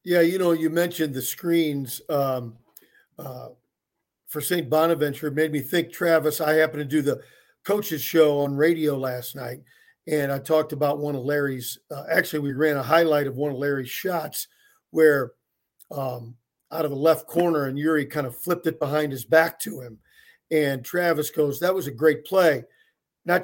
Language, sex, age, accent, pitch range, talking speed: English, male, 50-69, American, 145-175 Hz, 190 wpm